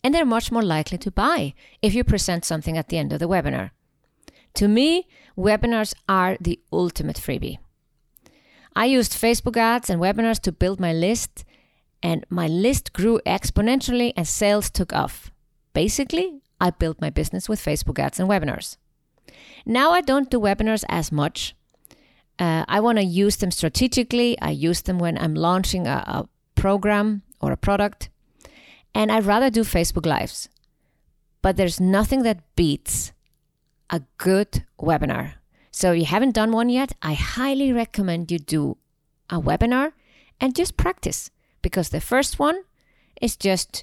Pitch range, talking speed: 170-235 Hz, 160 wpm